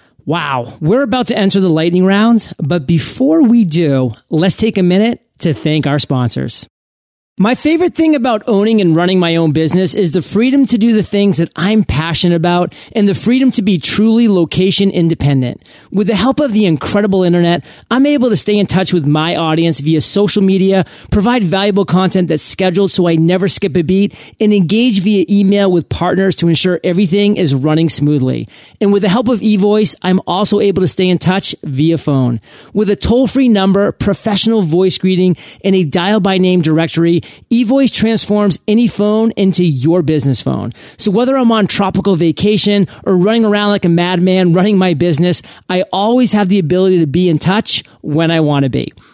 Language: English